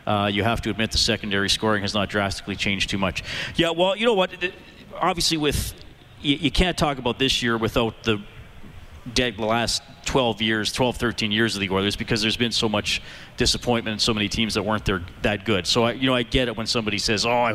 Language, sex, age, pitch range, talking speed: English, male, 40-59, 100-130 Hz, 230 wpm